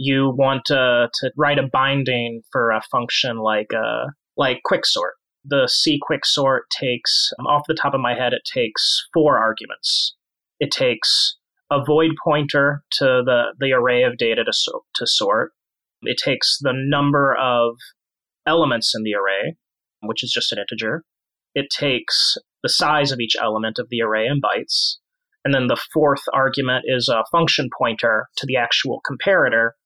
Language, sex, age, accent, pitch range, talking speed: English, male, 30-49, American, 115-150 Hz, 165 wpm